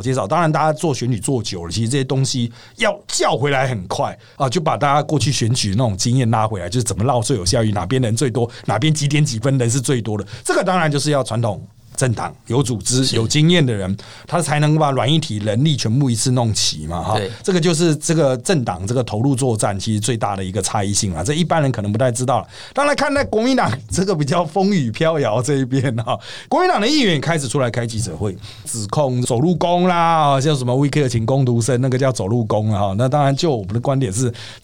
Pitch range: 115-155 Hz